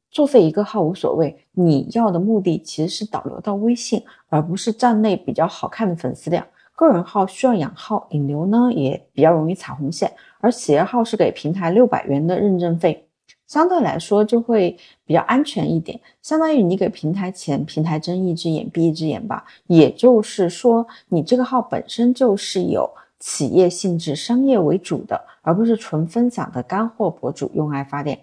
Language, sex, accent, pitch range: Chinese, female, native, 160-235 Hz